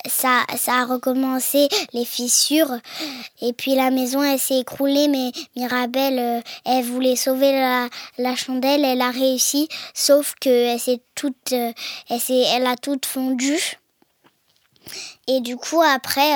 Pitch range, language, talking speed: 245-285 Hz, French, 145 wpm